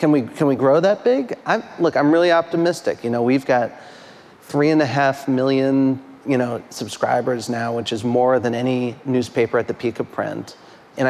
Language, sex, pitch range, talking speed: English, male, 120-150 Hz, 195 wpm